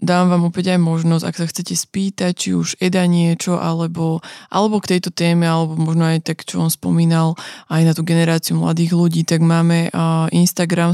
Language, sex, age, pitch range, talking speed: Slovak, female, 20-39, 165-185 Hz, 185 wpm